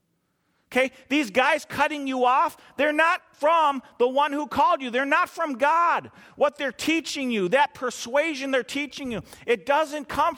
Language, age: English, 40-59